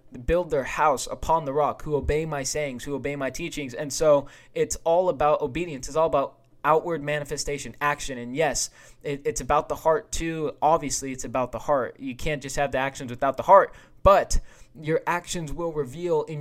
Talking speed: 195 wpm